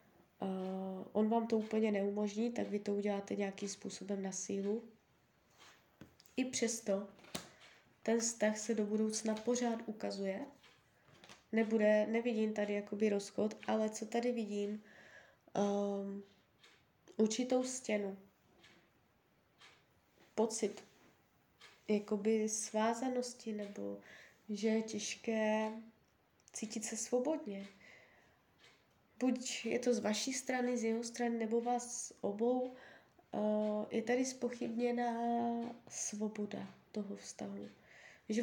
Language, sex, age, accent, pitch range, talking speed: Czech, female, 20-39, native, 205-235 Hz, 90 wpm